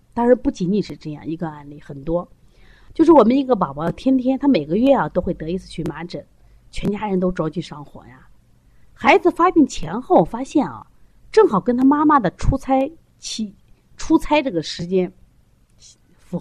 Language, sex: Chinese, female